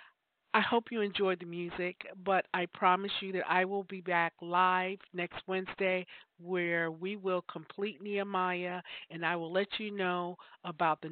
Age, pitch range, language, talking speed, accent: 50-69, 170-200 Hz, English, 165 wpm, American